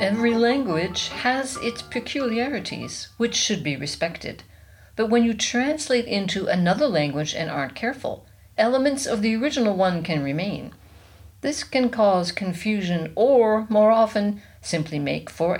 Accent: American